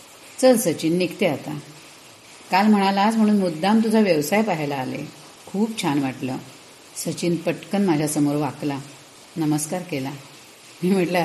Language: Marathi